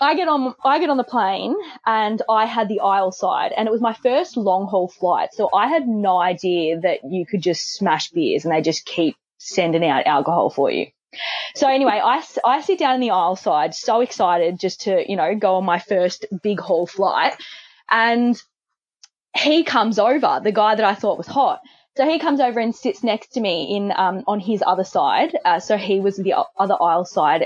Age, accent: 20-39, Australian